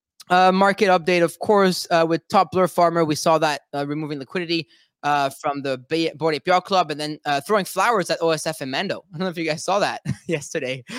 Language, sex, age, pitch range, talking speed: English, male, 20-39, 170-225 Hz, 220 wpm